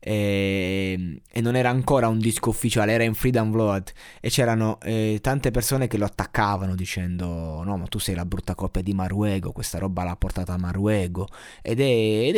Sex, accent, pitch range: male, native, 95-115 Hz